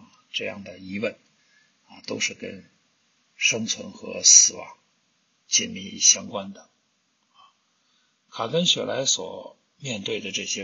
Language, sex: Chinese, male